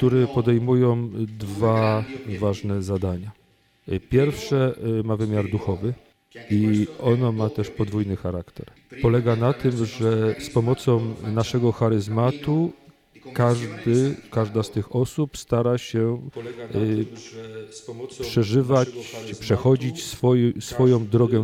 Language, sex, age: Polish, male, 40-59